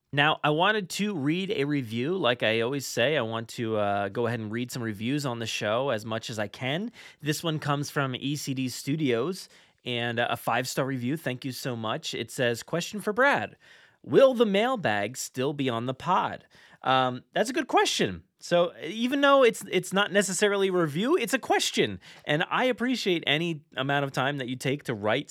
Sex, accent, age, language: male, American, 30-49, English